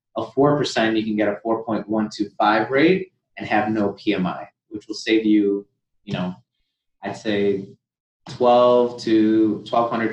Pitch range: 105-140 Hz